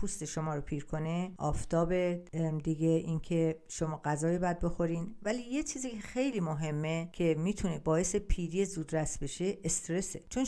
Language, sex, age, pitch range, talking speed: Persian, female, 50-69, 160-200 Hz, 150 wpm